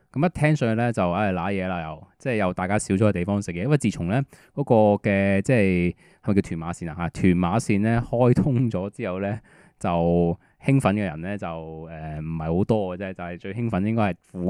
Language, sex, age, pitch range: Chinese, male, 20-39, 90-115 Hz